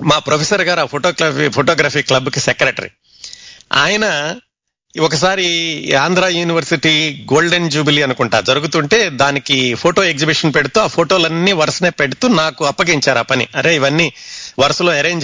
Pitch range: 140-185 Hz